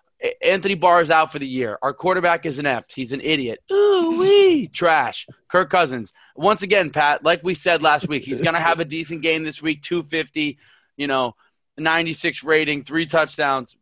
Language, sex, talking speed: English, male, 180 wpm